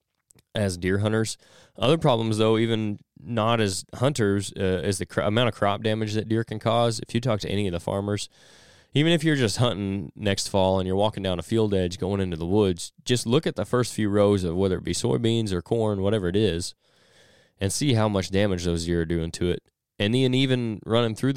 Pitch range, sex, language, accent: 90-110 Hz, male, English, American